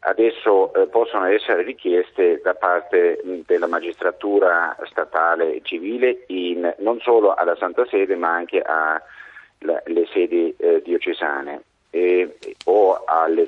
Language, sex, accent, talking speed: Italian, male, native, 125 wpm